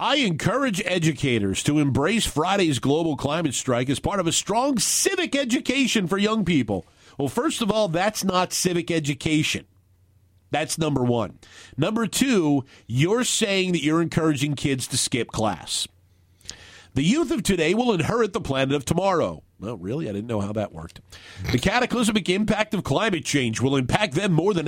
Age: 50-69